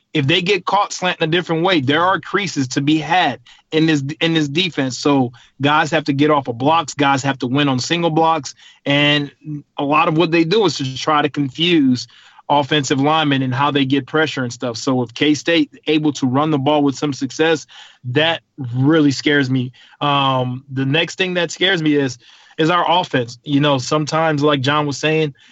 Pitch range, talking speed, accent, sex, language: 140-160 Hz, 205 wpm, American, male, English